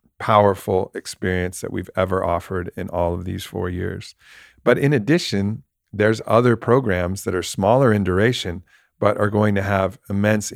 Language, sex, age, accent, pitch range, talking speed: English, male, 50-69, American, 95-115 Hz, 165 wpm